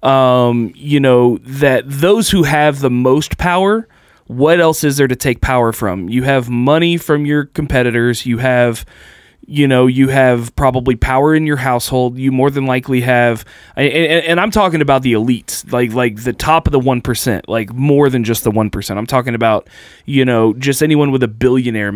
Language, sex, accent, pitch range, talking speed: English, male, American, 120-145 Hz, 195 wpm